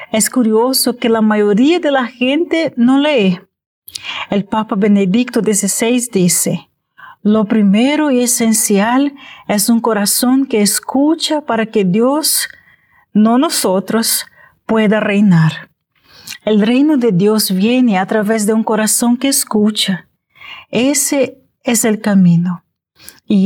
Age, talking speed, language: 40-59, 125 wpm, Spanish